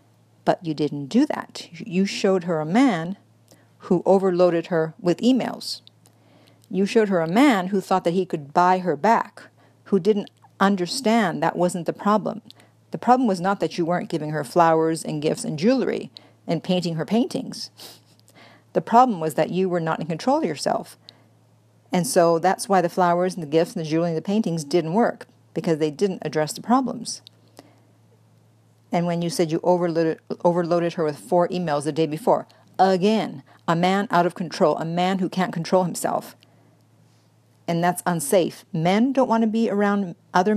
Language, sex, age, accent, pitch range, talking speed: English, female, 50-69, American, 160-200 Hz, 180 wpm